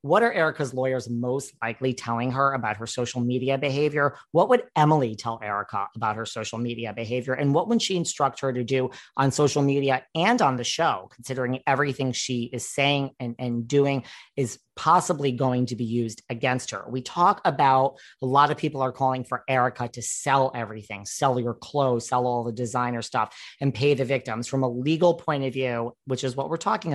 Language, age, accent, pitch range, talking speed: English, 40-59, American, 120-140 Hz, 205 wpm